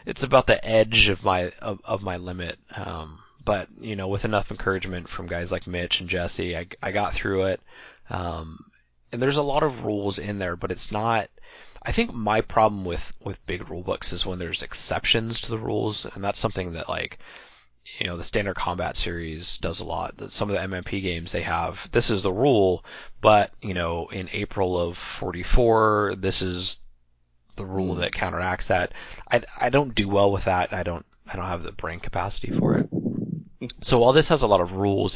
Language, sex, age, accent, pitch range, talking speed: English, male, 30-49, American, 85-105 Hz, 205 wpm